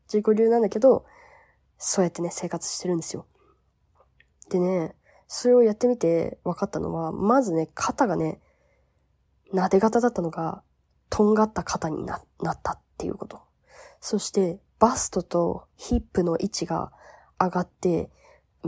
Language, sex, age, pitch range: Japanese, female, 20-39, 175-235 Hz